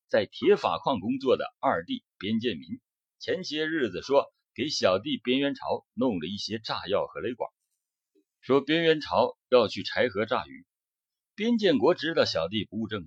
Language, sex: Chinese, male